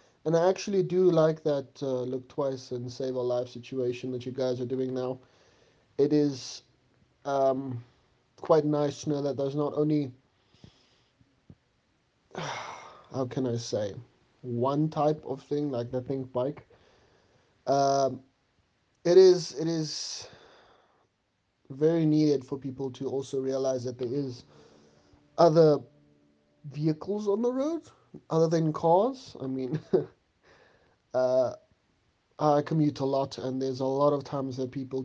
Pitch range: 130-160 Hz